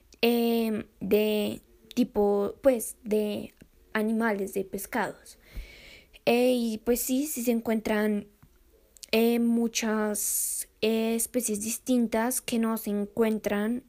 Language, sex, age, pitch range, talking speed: Spanish, female, 10-29, 215-240 Hz, 105 wpm